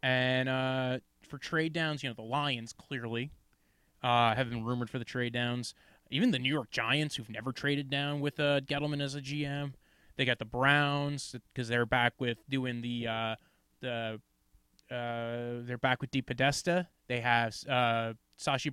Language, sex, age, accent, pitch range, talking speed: English, male, 20-39, American, 125-150 Hz, 180 wpm